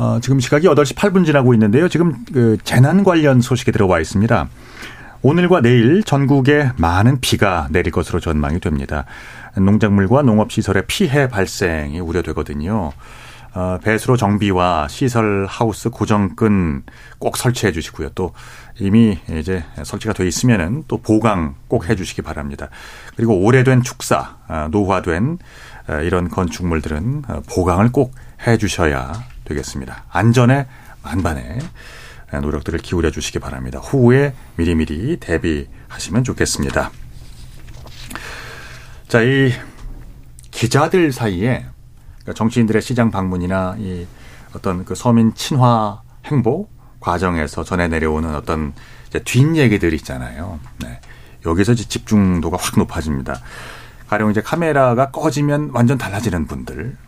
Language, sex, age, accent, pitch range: Korean, male, 40-59, native, 85-125 Hz